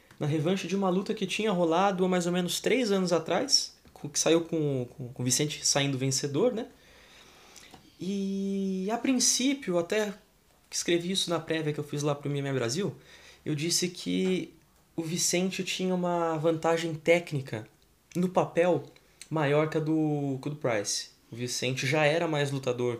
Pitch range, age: 140-185 Hz, 20-39